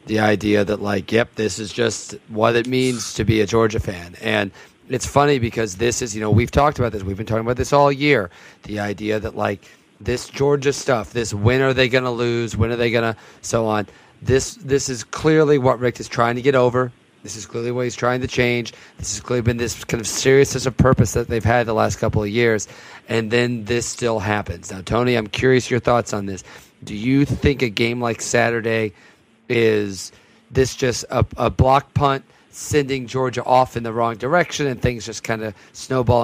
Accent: American